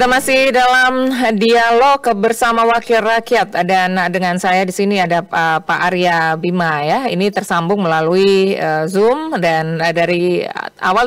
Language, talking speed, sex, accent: Indonesian, 145 wpm, female, native